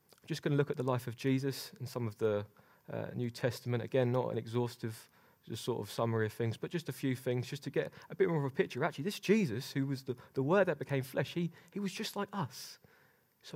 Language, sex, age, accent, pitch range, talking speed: English, male, 20-39, British, 125-150 Hz, 255 wpm